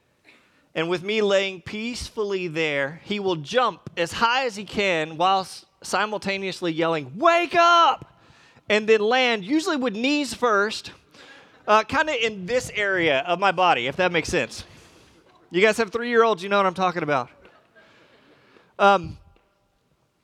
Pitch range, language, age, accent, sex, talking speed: 145-210 Hz, English, 30-49, American, male, 145 wpm